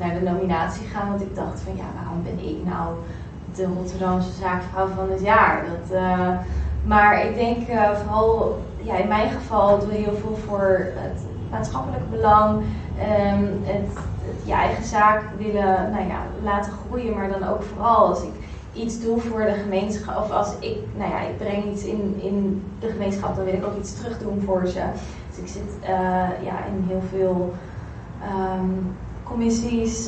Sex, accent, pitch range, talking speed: female, Dutch, 185-210 Hz, 185 wpm